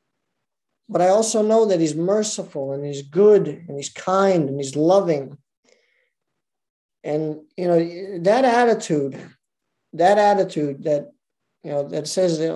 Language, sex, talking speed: English, male, 135 wpm